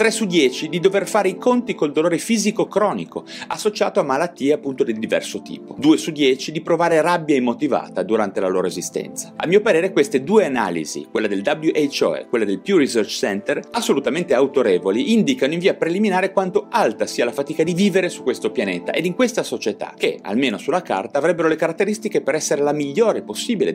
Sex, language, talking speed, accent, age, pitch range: male, Italian, 195 wpm, native, 30-49, 150-225 Hz